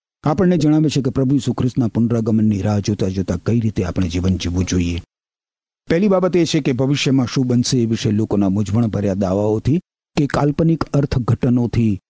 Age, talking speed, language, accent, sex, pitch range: 50-69, 150 wpm, Gujarati, native, male, 95-140 Hz